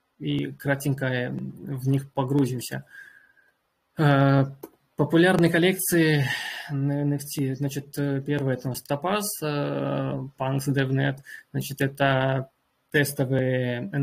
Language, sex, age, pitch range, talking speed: Russian, male, 20-39, 130-145 Hz, 80 wpm